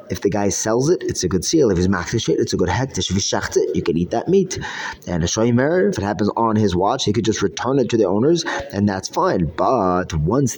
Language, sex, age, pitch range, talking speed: English, male, 30-49, 95-130 Hz, 260 wpm